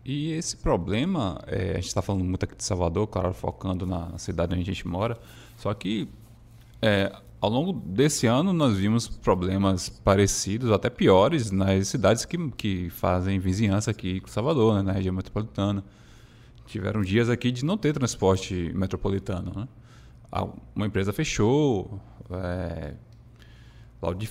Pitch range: 95-120 Hz